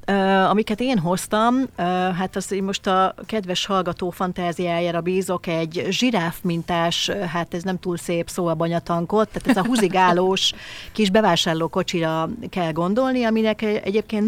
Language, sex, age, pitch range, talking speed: Hungarian, female, 40-59, 175-200 Hz, 145 wpm